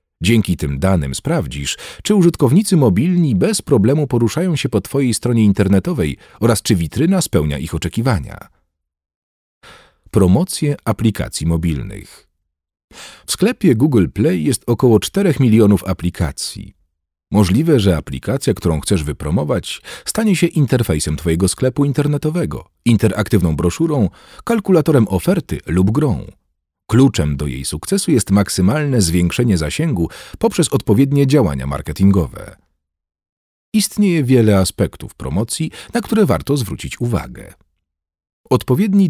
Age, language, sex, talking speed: 40-59, Polish, male, 110 wpm